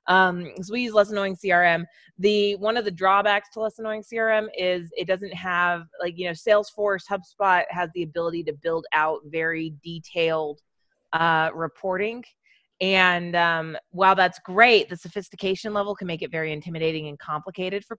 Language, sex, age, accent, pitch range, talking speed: English, female, 20-39, American, 165-210 Hz, 170 wpm